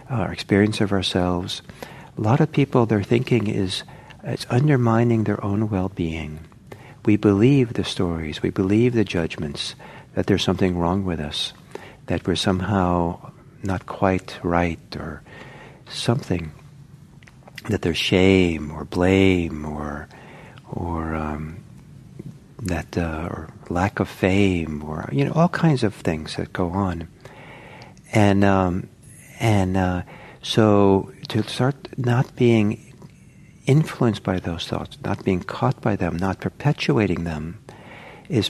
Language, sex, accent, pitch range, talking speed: English, male, American, 90-130 Hz, 130 wpm